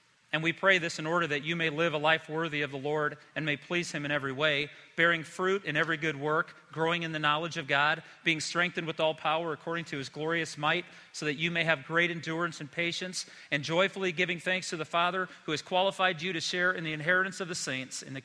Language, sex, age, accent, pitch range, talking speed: English, male, 40-59, American, 150-175 Hz, 245 wpm